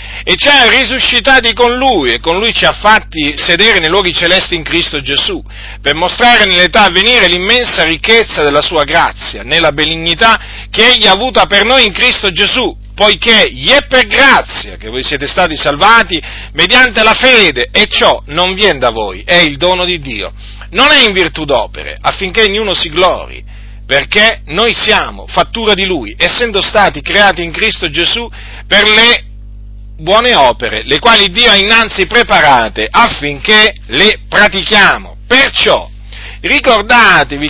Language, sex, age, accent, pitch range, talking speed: Italian, male, 40-59, native, 155-225 Hz, 160 wpm